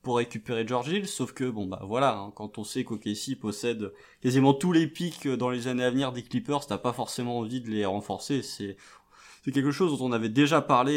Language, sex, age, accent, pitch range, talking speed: French, male, 20-39, French, 110-145 Hz, 225 wpm